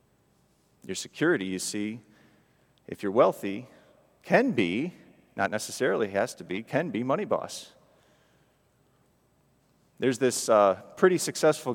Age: 40-59